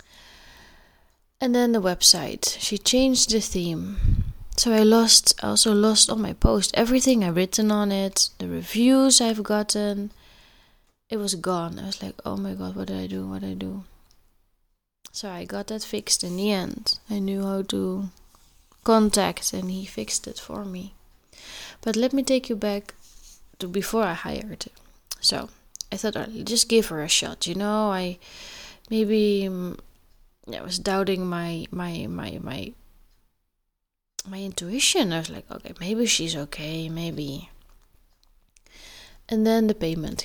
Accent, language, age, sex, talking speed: Dutch, English, 20-39, female, 165 wpm